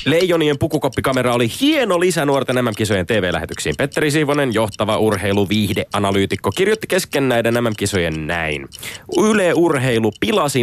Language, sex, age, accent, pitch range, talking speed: Finnish, male, 30-49, native, 100-140 Hz, 105 wpm